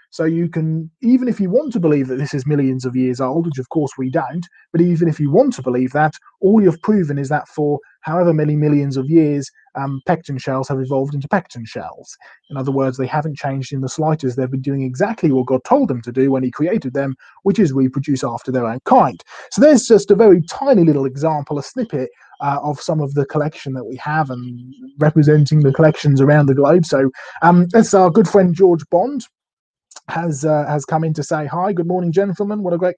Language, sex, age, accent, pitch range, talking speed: English, male, 30-49, British, 140-180 Hz, 230 wpm